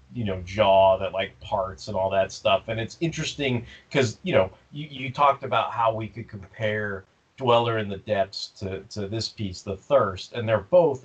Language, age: English, 30-49